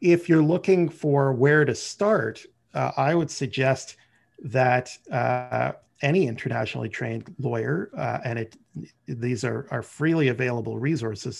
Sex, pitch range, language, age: male, 120-145 Hz, English, 40-59